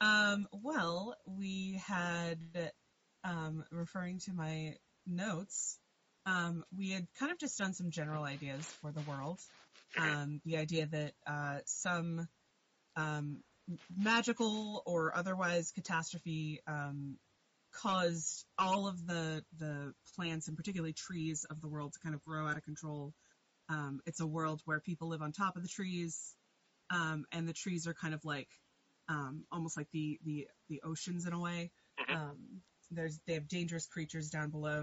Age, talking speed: 30-49, 155 wpm